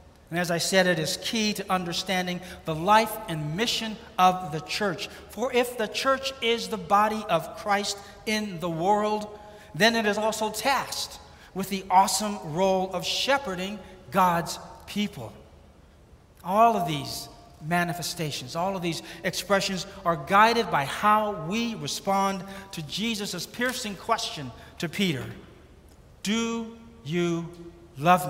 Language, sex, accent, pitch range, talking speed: English, male, American, 155-210 Hz, 135 wpm